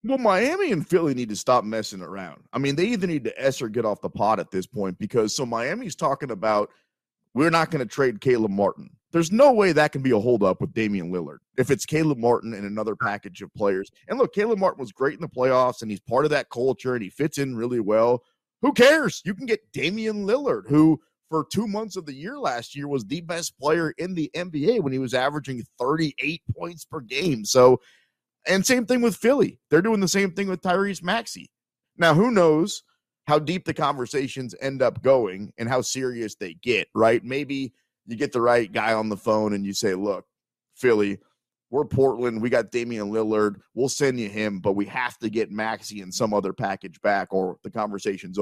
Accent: American